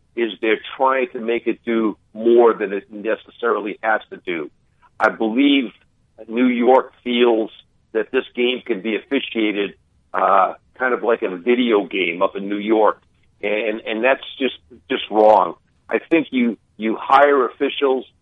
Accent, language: American, English